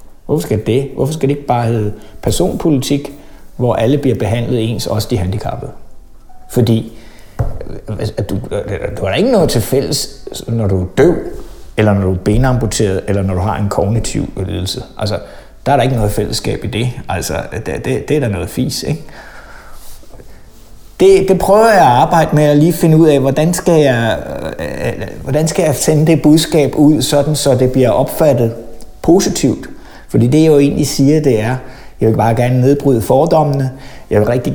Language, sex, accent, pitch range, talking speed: Danish, male, native, 110-145 Hz, 180 wpm